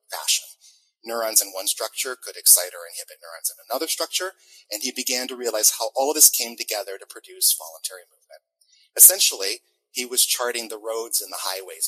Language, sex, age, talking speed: English, male, 30-49, 185 wpm